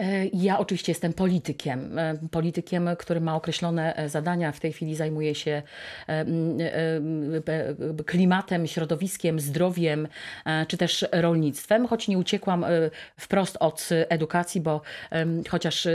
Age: 40-59